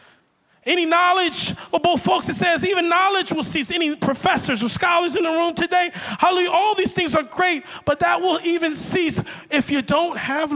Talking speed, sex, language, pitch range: 195 wpm, male, English, 215-300 Hz